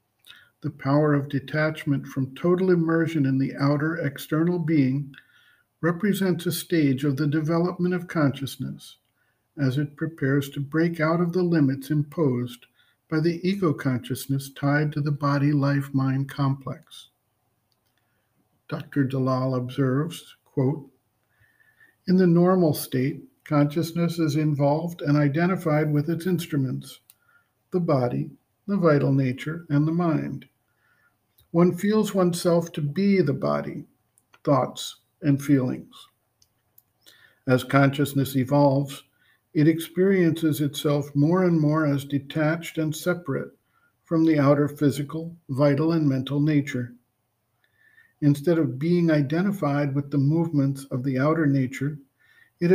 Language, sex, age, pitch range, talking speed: English, male, 50-69, 135-165 Hz, 120 wpm